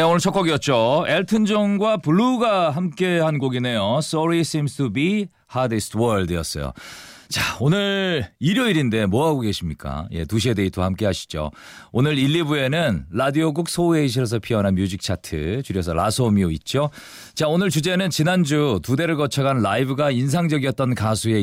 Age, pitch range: 40-59, 100-170 Hz